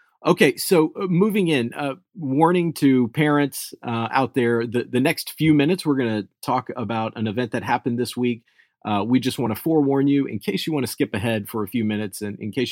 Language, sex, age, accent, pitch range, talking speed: English, male, 40-59, American, 110-135 Hz, 225 wpm